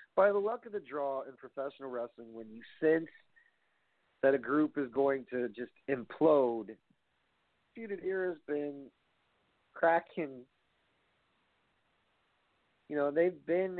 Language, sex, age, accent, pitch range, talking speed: English, male, 50-69, American, 130-200 Hz, 120 wpm